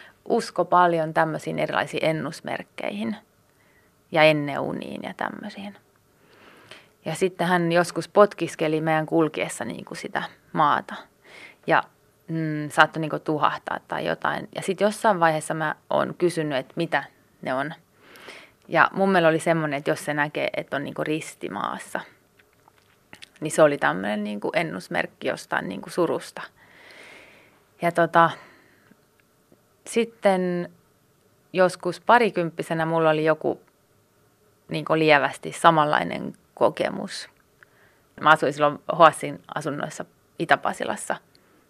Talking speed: 115 wpm